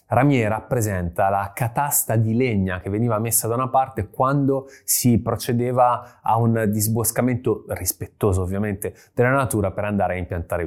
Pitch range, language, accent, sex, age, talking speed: 100-120 Hz, Italian, native, male, 20-39, 145 wpm